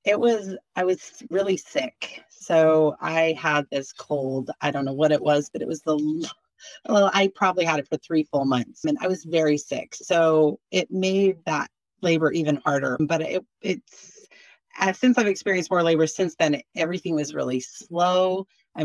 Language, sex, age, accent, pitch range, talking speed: English, female, 30-49, American, 155-190 Hz, 190 wpm